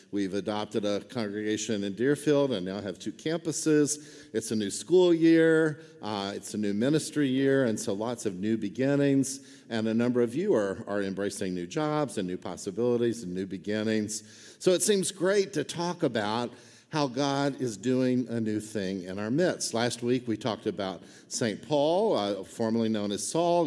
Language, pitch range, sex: English, 105-140 Hz, male